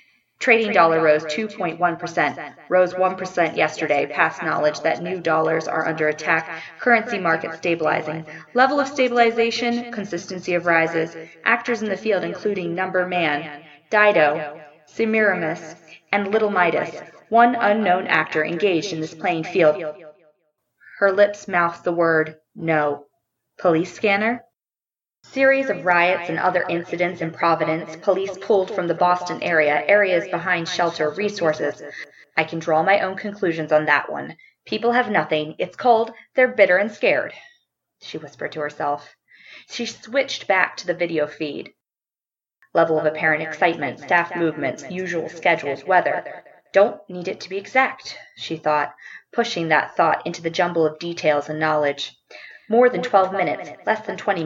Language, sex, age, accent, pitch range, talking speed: English, female, 20-39, American, 155-200 Hz, 145 wpm